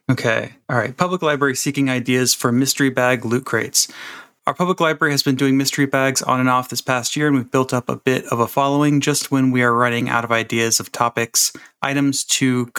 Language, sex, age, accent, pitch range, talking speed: English, male, 30-49, American, 125-140 Hz, 220 wpm